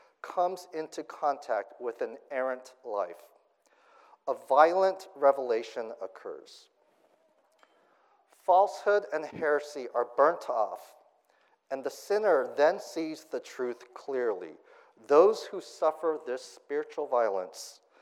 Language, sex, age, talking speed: English, male, 50-69, 105 wpm